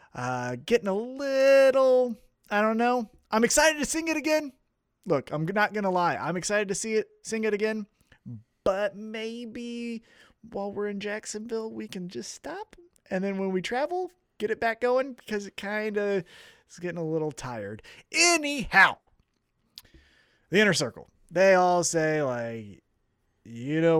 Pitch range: 150-215 Hz